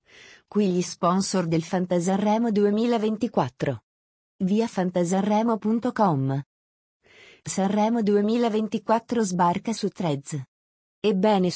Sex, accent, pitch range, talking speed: female, native, 175-215 Hz, 75 wpm